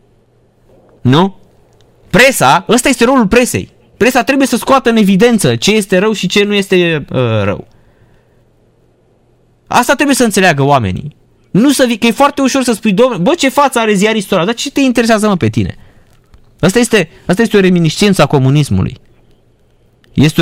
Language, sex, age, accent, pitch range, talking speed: Romanian, male, 20-39, native, 130-205 Hz, 170 wpm